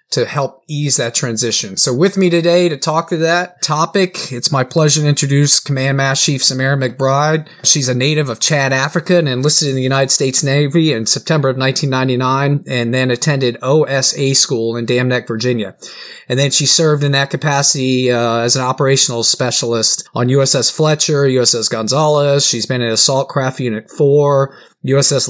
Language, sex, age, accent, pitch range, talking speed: English, male, 30-49, American, 125-145 Hz, 180 wpm